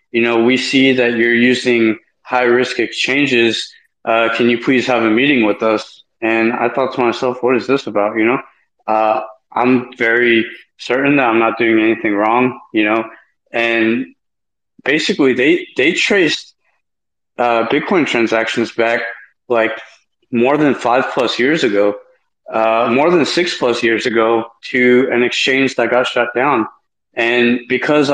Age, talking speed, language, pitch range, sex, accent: 20-39, 150 wpm, English, 115-125 Hz, male, American